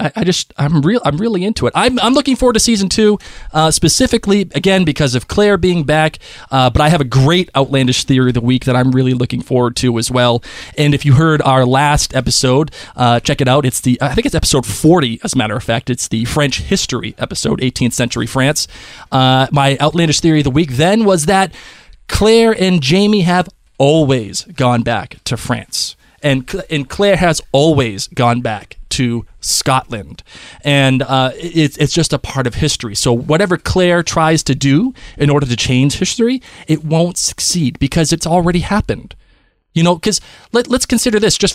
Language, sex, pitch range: English, male, 130-185 Hz